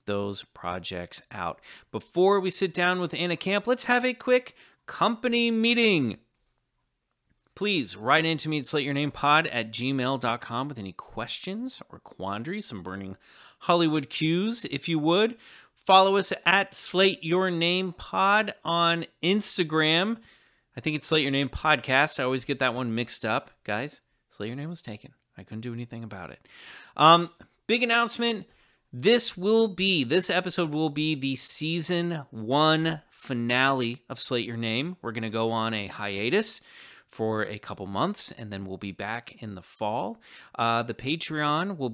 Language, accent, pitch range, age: English, American, 120-175 Hz, 30-49